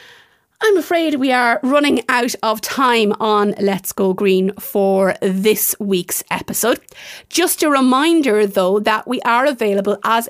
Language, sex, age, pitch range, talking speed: English, female, 30-49, 200-255 Hz, 145 wpm